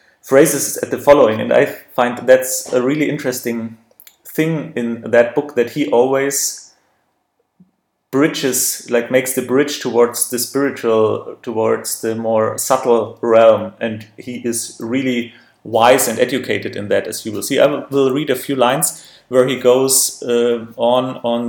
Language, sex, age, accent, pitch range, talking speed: English, male, 30-49, German, 120-150 Hz, 155 wpm